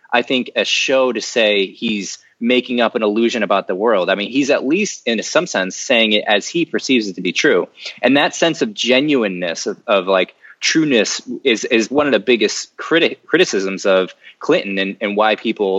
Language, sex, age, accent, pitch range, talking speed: English, male, 20-39, American, 100-135 Hz, 205 wpm